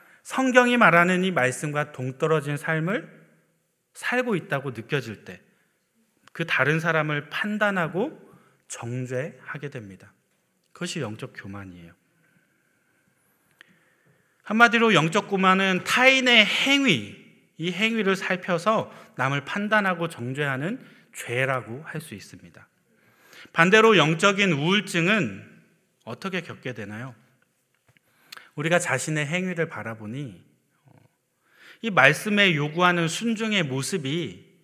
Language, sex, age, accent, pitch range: Korean, male, 40-59, native, 135-200 Hz